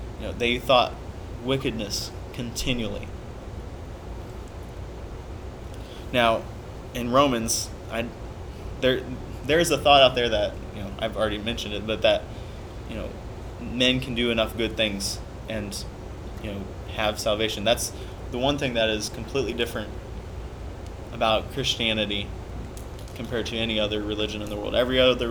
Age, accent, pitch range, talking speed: 20-39, American, 100-120 Hz, 140 wpm